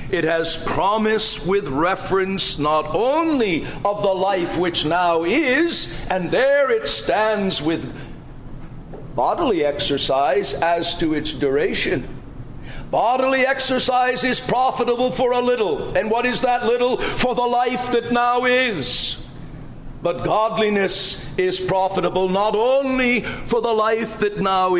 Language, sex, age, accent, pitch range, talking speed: English, male, 60-79, American, 160-245 Hz, 130 wpm